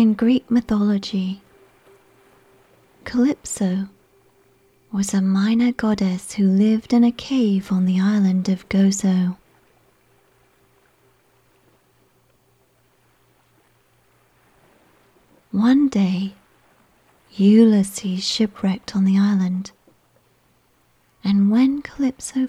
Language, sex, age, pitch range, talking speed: English, female, 30-49, 185-225 Hz, 75 wpm